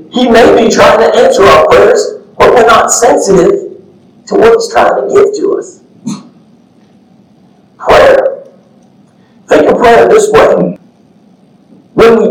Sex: male